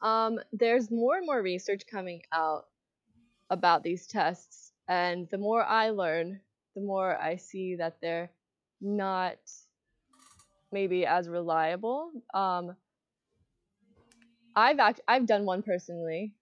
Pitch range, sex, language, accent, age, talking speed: 170-205 Hz, female, English, American, 20-39, 120 wpm